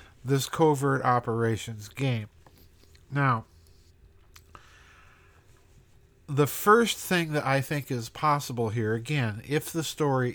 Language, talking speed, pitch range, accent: English, 105 wpm, 115-140 Hz, American